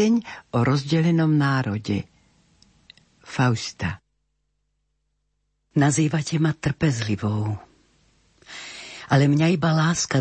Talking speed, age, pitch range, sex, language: 65 wpm, 50-69, 120-155 Hz, female, Slovak